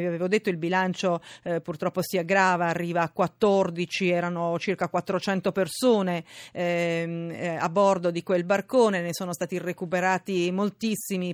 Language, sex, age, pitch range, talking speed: Italian, female, 40-59, 170-205 Hz, 145 wpm